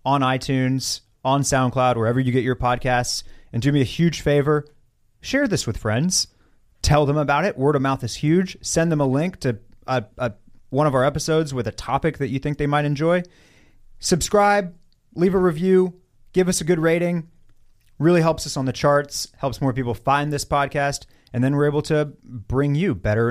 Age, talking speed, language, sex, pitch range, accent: 30-49, 200 wpm, English, male, 115-145 Hz, American